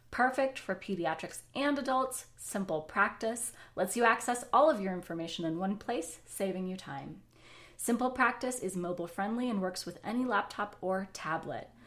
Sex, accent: female, American